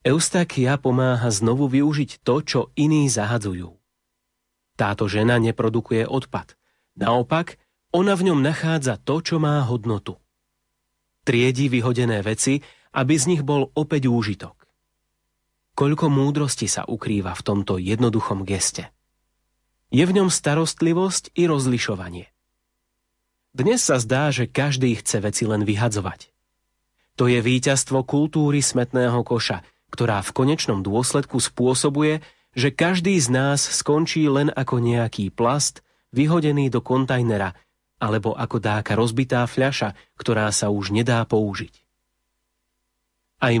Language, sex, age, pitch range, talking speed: Slovak, male, 30-49, 110-150 Hz, 120 wpm